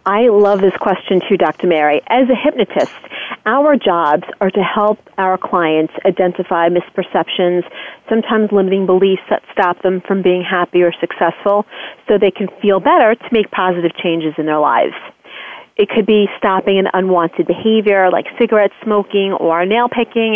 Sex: female